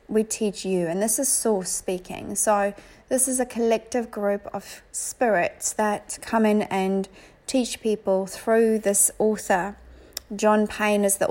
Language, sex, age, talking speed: English, female, 40-59, 155 wpm